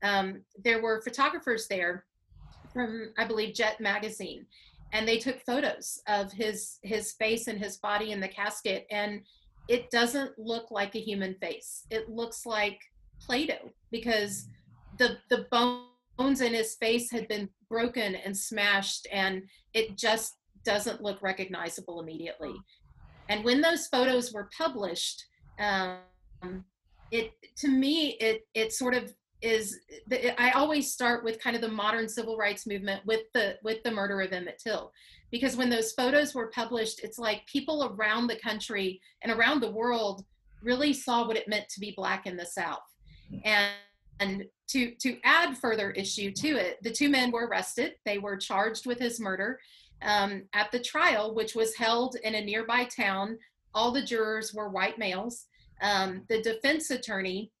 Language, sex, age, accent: English, female, 40-59, American